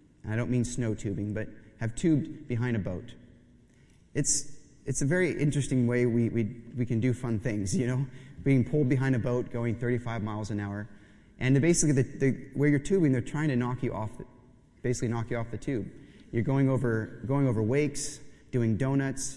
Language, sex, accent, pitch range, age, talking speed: English, male, American, 115-145 Hz, 30-49, 200 wpm